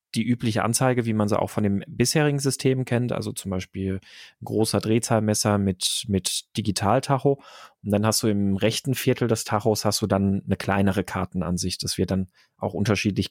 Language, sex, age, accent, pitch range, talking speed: German, male, 30-49, German, 105-130 Hz, 185 wpm